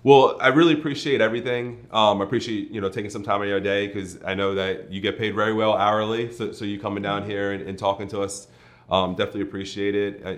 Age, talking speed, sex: 30-49, 245 wpm, male